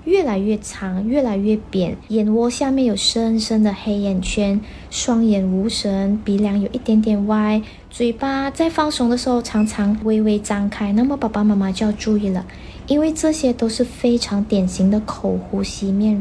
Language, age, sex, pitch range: Chinese, 20-39, female, 200-240 Hz